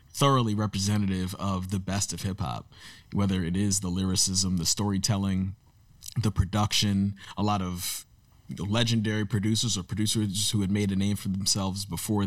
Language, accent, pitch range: English, American, 90-105 Hz